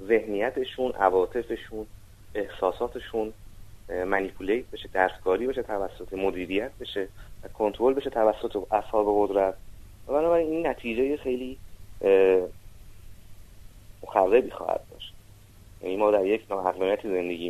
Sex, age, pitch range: male, 30-49, 95-110 Hz